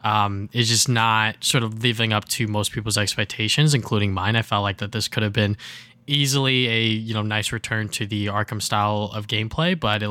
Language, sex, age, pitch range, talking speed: English, male, 10-29, 110-150 Hz, 215 wpm